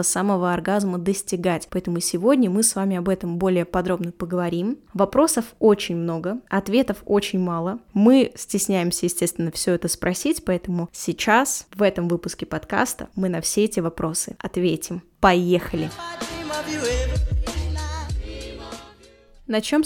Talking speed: 120 wpm